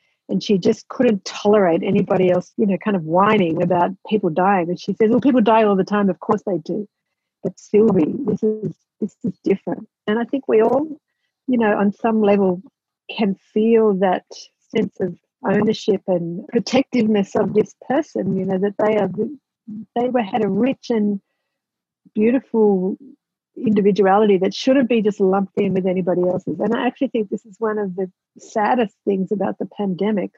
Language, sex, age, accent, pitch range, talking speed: English, female, 50-69, Australian, 195-230 Hz, 180 wpm